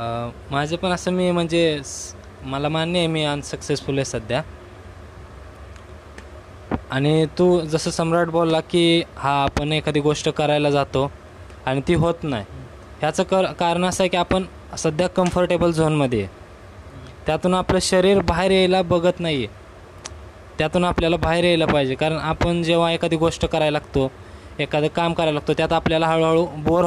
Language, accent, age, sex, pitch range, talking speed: Marathi, native, 20-39, male, 110-170 Hz, 145 wpm